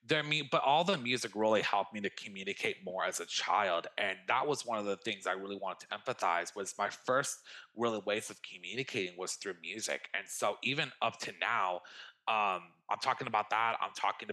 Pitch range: 95-110 Hz